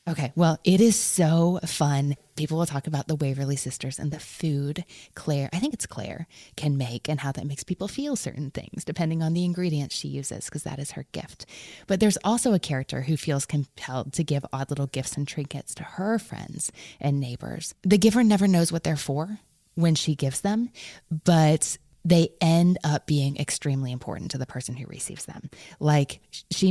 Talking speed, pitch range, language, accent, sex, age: 200 wpm, 135-170 Hz, English, American, female, 20-39